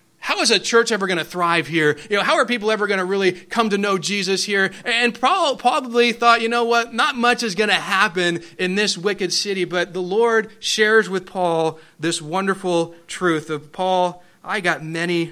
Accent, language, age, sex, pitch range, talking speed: American, English, 30-49, male, 170-220 Hz, 210 wpm